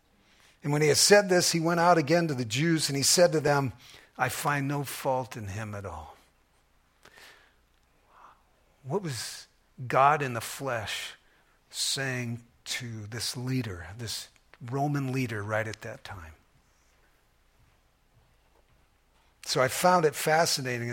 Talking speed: 140 wpm